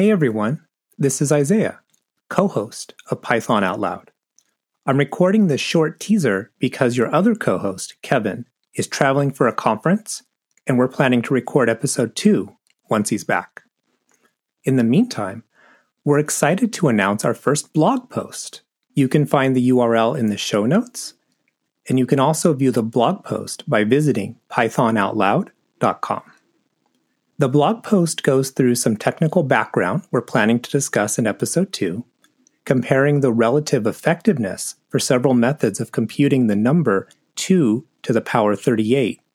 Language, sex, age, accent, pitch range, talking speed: English, male, 30-49, American, 120-170 Hz, 150 wpm